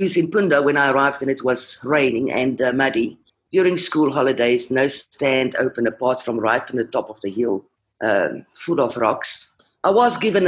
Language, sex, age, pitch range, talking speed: English, female, 50-69, 125-180 Hz, 200 wpm